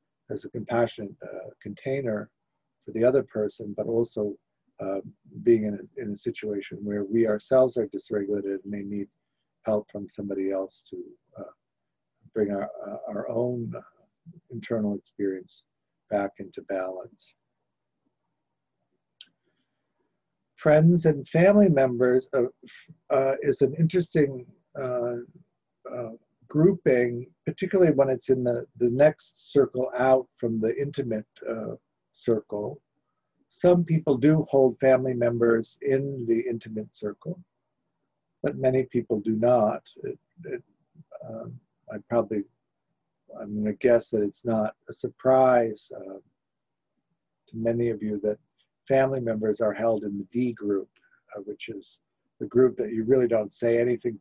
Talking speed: 130 wpm